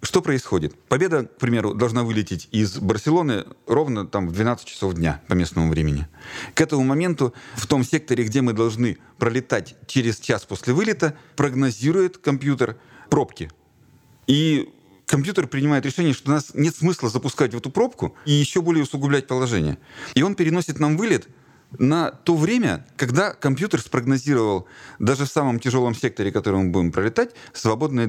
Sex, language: male, Russian